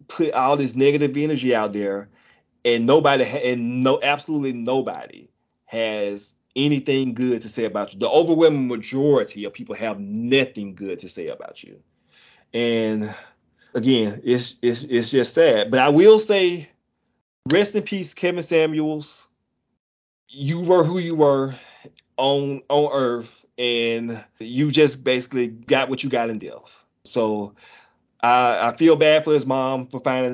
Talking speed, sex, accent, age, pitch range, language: 150 wpm, male, American, 30-49, 120-150 Hz, English